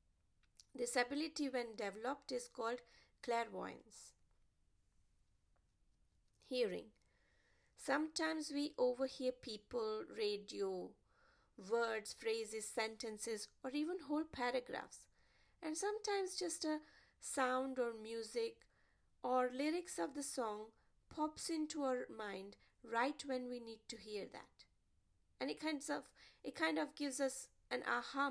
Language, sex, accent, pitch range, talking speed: English, female, Indian, 235-315 Hz, 110 wpm